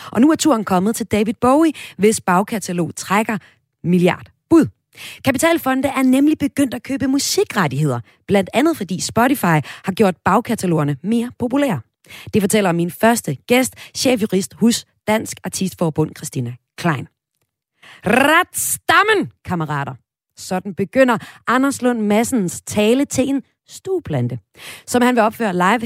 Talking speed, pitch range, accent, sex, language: 130 wpm, 160-260 Hz, native, female, Danish